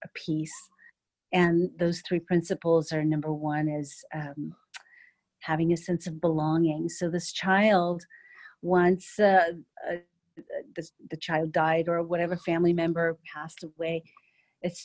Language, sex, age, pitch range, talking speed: English, female, 40-59, 160-185 Hz, 135 wpm